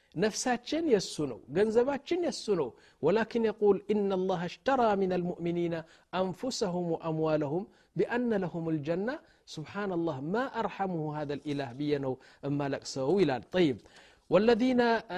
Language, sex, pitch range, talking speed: Amharic, male, 165-210 Hz, 115 wpm